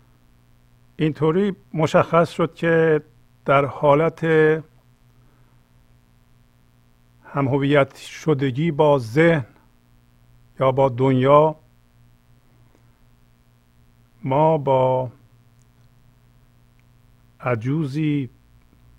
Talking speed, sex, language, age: 50 wpm, male, Persian, 50-69